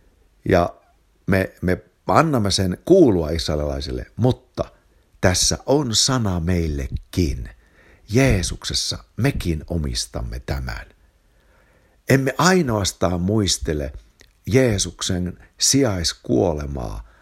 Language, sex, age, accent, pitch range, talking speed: Finnish, male, 60-79, native, 85-115 Hz, 75 wpm